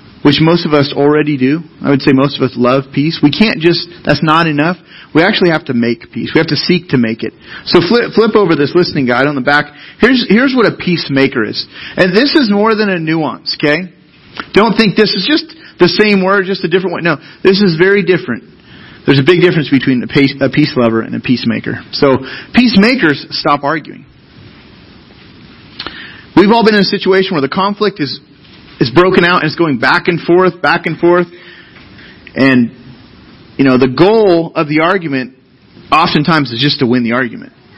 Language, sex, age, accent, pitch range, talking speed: English, male, 30-49, American, 140-190 Hz, 205 wpm